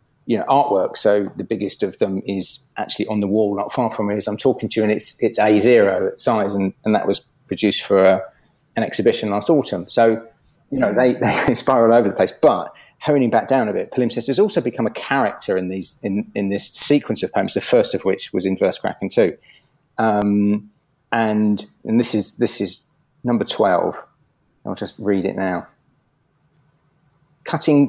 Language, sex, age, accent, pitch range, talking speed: English, male, 30-49, British, 105-135 Hz, 200 wpm